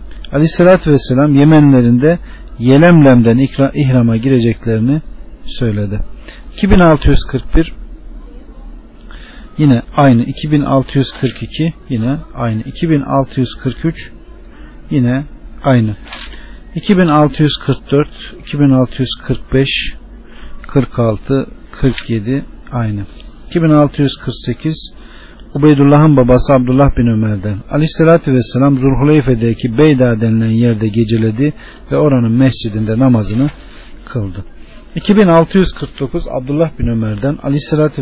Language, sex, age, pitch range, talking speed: Turkish, male, 50-69, 115-145 Hz, 75 wpm